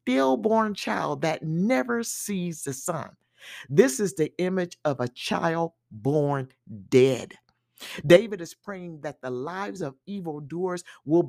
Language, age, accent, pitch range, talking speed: English, 50-69, American, 135-190 Hz, 135 wpm